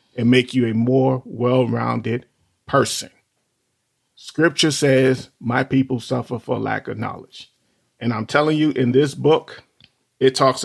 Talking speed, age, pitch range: 140 wpm, 40-59, 125-140 Hz